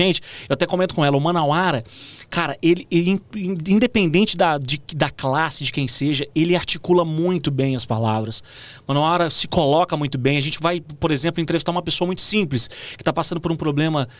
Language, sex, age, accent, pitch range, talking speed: Portuguese, male, 30-49, Brazilian, 135-180 Hz, 195 wpm